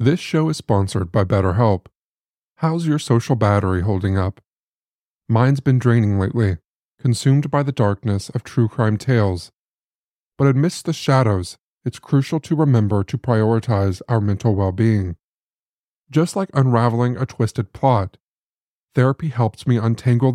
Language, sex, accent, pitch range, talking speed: English, male, American, 105-135 Hz, 140 wpm